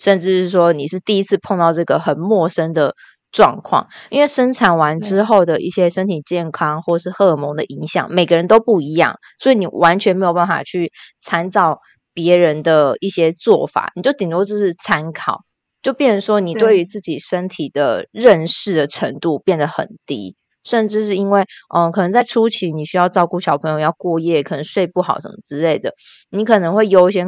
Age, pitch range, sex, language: 20-39, 160-200 Hz, female, Chinese